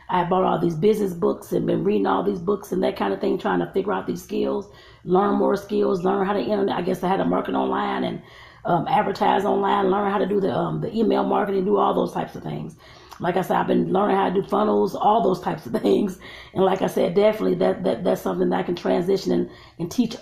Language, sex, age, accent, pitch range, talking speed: English, female, 30-49, American, 175-200 Hz, 260 wpm